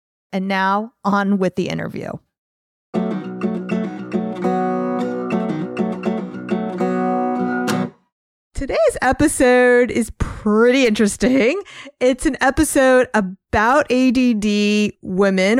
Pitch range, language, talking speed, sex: 195-265 Hz, English, 65 wpm, female